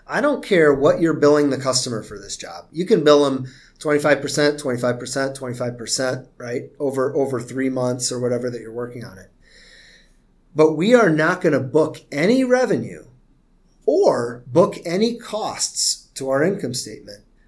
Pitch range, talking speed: 130-155 Hz, 160 wpm